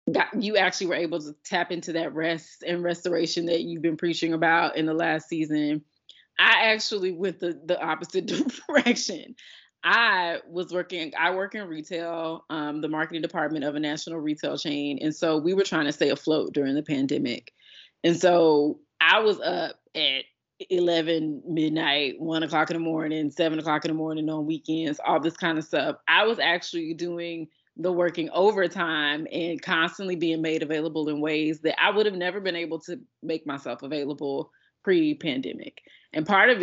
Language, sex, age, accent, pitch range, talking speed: English, female, 20-39, American, 160-190 Hz, 180 wpm